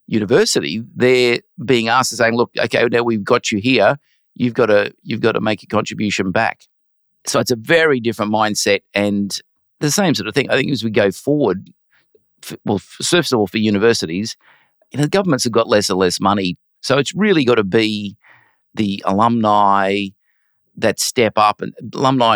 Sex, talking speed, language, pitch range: male, 185 wpm, English, 105-130 Hz